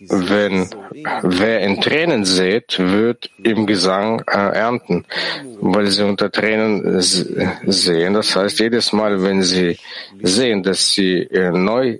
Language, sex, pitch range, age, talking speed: English, male, 100-125 Hz, 50-69, 135 wpm